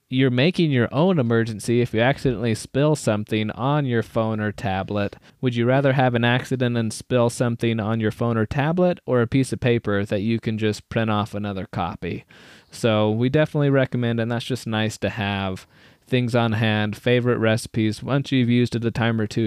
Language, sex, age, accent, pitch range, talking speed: English, male, 20-39, American, 110-130 Hz, 200 wpm